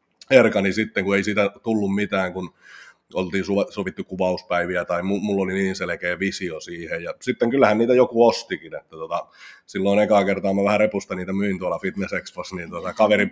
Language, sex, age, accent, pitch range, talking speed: Finnish, male, 30-49, native, 90-105 Hz, 180 wpm